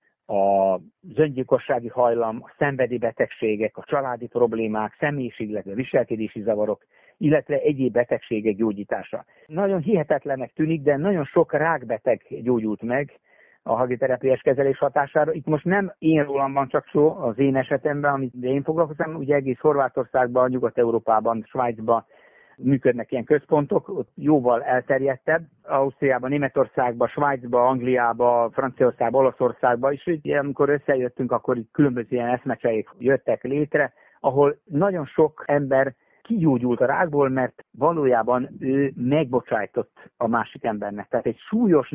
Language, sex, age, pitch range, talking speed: Hungarian, male, 60-79, 120-150 Hz, 125 wpm